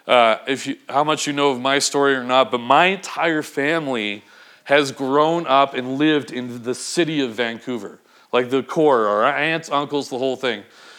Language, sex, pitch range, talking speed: English, male, 135-170 Hz, 180 wpm